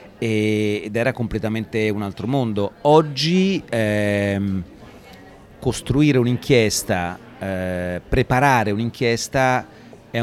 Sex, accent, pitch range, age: male, native, 95-115 Hz, 40-59